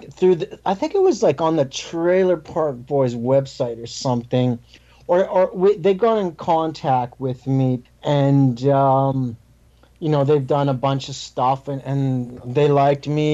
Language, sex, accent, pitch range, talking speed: English, male, American, 130-150 Hz, 175 wpm